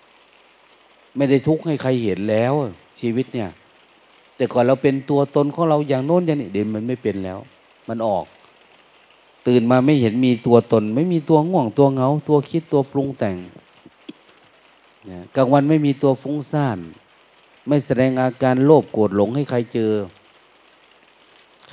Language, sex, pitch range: Thai, male, 105-140 Hz